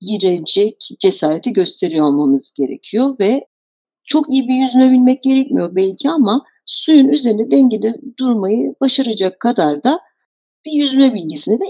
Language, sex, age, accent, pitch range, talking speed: Turkish, female, 50-69, native, 205-275 Hz, 130 wpm